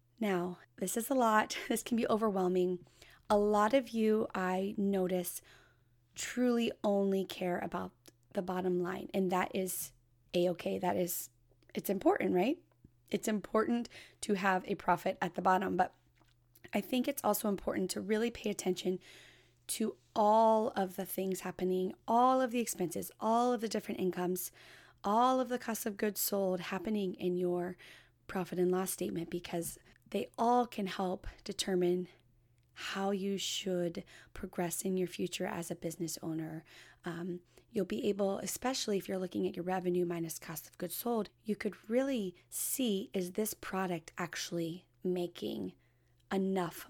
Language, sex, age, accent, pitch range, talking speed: English, female, 20-39, American, 175-210 Hz, 155 wpm